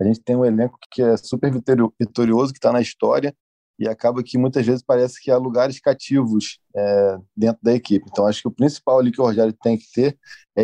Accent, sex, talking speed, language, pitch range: Brazilian, male, 225 wpm, Portuguese, 120-145 Hz